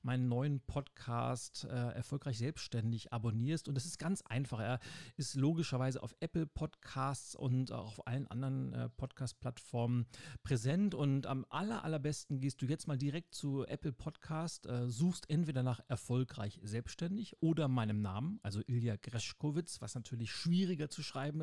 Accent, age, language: German, 40-59, German